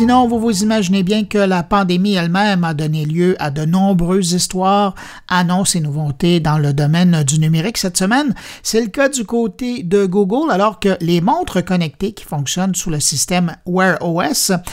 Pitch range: 170-225 Hz